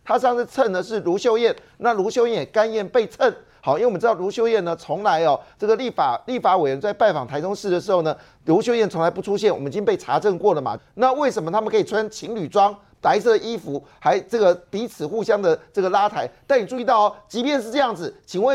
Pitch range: 205-275 Hz